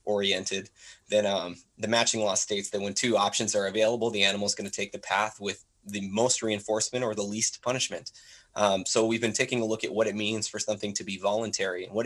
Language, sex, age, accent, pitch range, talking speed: English, male, 20-39, American, 100-115 Hz, 235 wpm